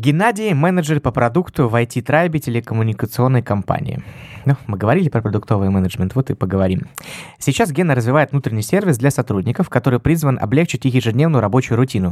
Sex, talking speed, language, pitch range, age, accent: male, 160 wpm, Russian, 110-150 Hz, 20-39, native